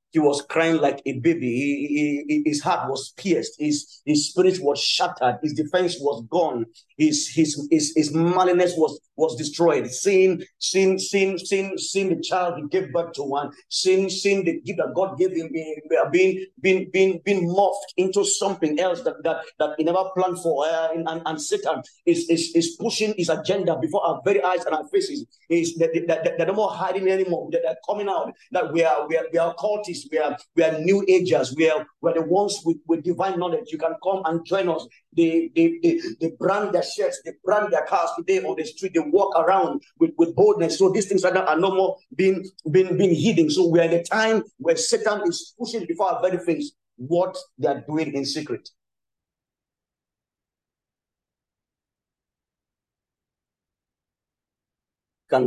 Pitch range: 155-195 Hz